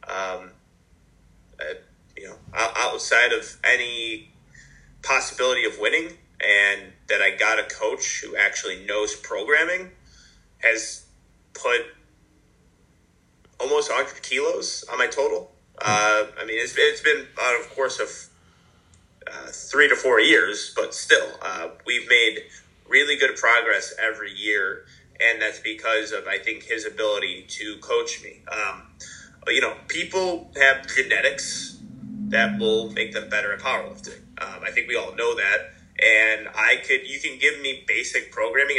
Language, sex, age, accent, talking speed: Italian, male, 30-49, American, 145 wpm